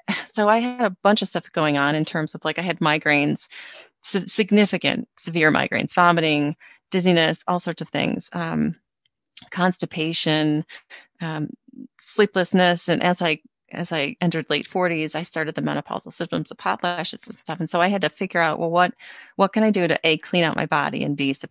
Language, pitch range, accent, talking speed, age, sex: English, 160-200 Hz, American, 185 wpm, 30-49, female